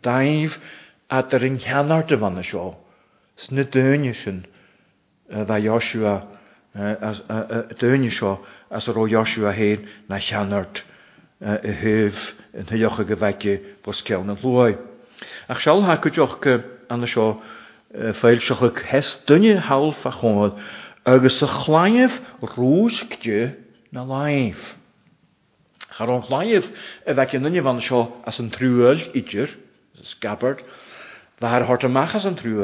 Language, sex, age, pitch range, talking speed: English, male, 50-69, 110-145 Hz, 85 wpm